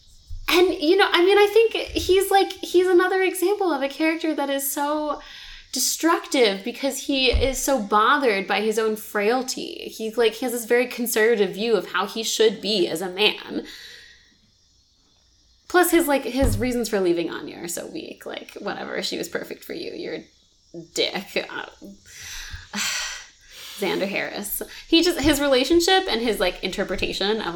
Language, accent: English, American